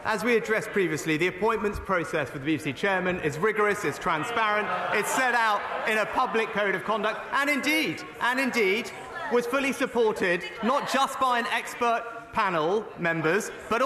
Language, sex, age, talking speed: English, male, 30-49, 170 wpm